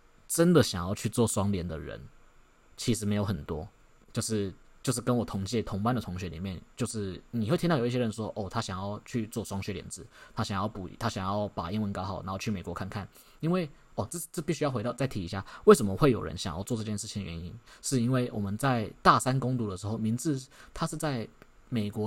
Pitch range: 100-120 Hz